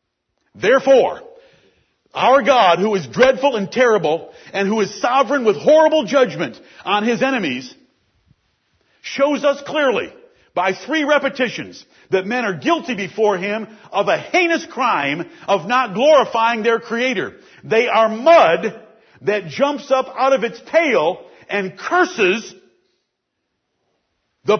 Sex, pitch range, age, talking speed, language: male, 190-270 Hz, 50-69, 125 wpm, English